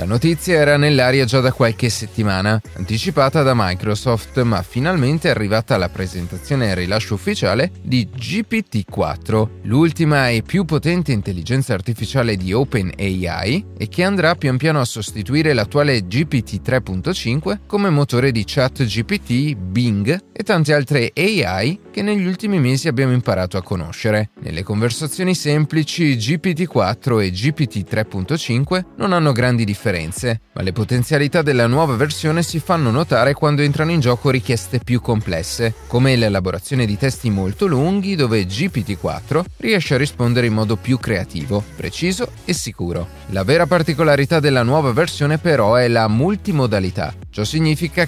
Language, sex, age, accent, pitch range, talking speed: Italian, male, 30-49, native, 105-150 Hz, 140 wpm